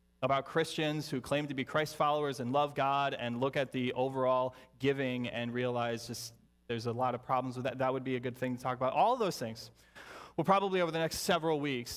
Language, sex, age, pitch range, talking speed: English, male, 30-49, 105-150 Hz, 235 wpm